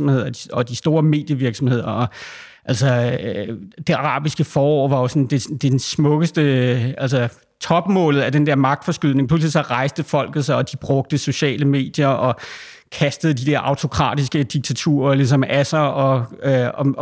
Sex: male